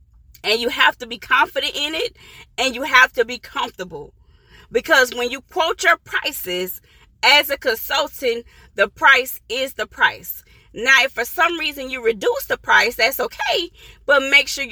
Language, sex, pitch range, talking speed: English, female, 235-335 Hz, 170 wpm